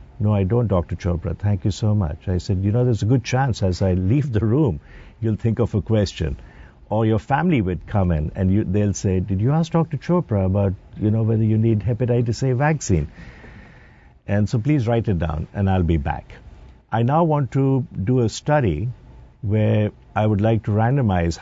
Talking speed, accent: 205 wpm, Indian